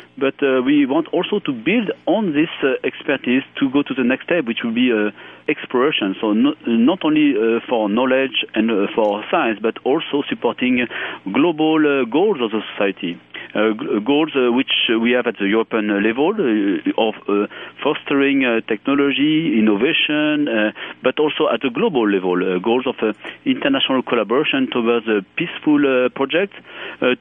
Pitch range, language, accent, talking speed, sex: 115-145 Hz, English, French, 175 wpm, male